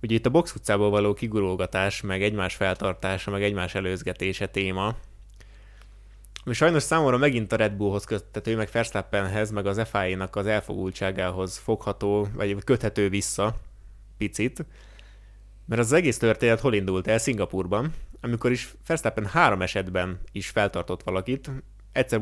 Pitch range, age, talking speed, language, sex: 100-120 Hz, 20-39, 140 wpm, Hungarian, male